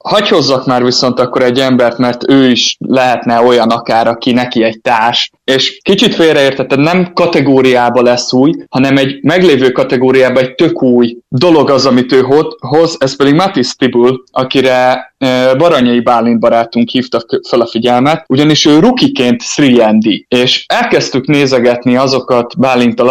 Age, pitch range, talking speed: 20-39, 120-145 Hz, 145 wpm